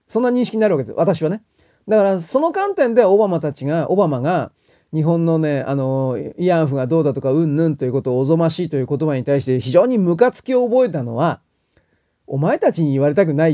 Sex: male